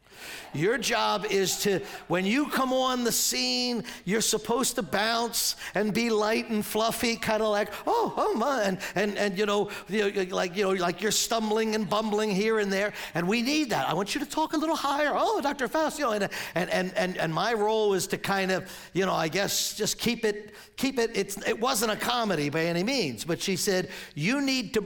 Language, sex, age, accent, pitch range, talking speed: English, male, 50-69, American, 185-235 Hz, 225 wpm